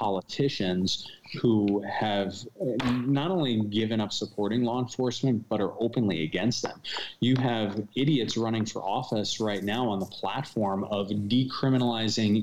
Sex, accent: male, American